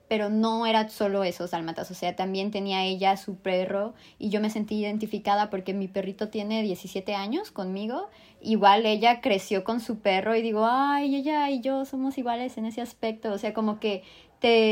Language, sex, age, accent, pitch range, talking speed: Spanish, male, 20-39, Mexican, 195-235 Hz, 190 wpm